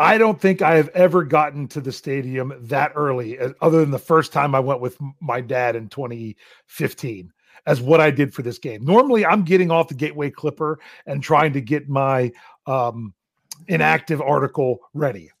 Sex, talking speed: male, 185 wpm